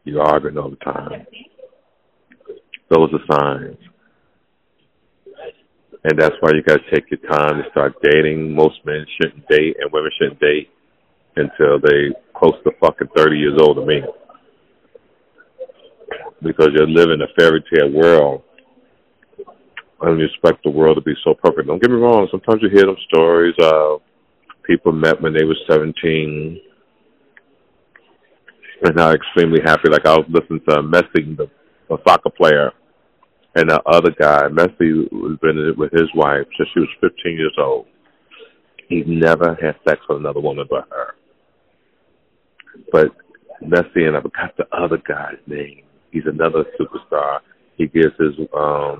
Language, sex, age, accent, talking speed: English, male, 40-59, American, 155 wpm